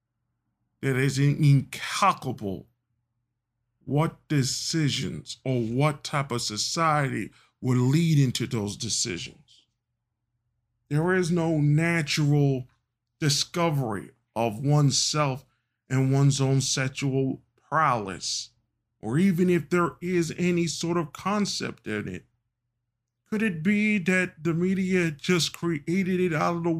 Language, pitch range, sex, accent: English, 115-155 Hz, male, American